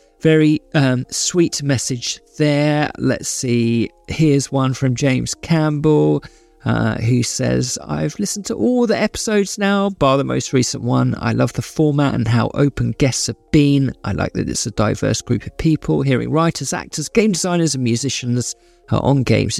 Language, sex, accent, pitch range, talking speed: English, male, British, 125-155 Hz, 170 wpm